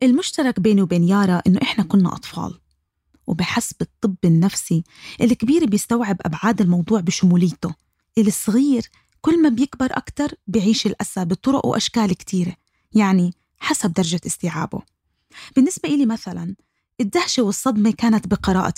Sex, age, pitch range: female, 20-39, 175-235 Hz